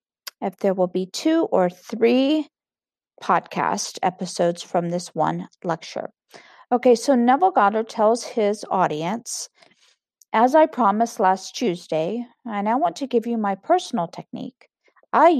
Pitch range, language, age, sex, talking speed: 185-250 Hz, English, 50-69, female, 135 wpm